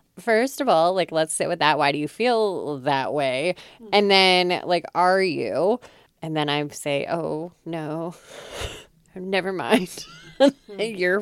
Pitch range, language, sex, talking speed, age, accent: 165-220 Hz, English, female, 150 wpm, 20-39, American